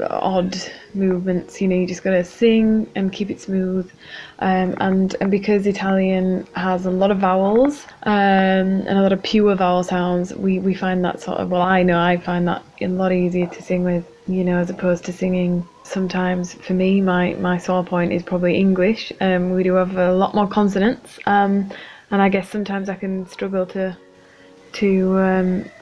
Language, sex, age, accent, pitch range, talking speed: English, female, 20-39, British, 185-200 Hz, 195 wpm